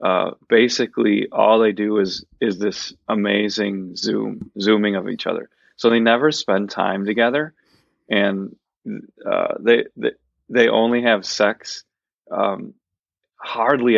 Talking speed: 130 wpm